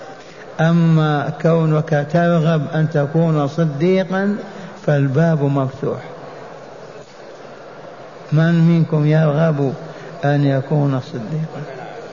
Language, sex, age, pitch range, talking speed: Arabic, male, 60-79, 150-175 Hz, 70 wpm